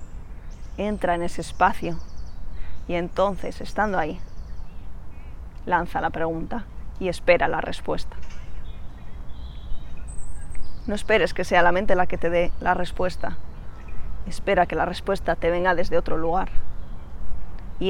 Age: 20-39